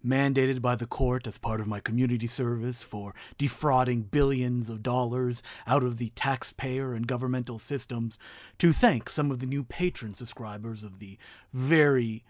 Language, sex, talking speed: English, male, 160 wpm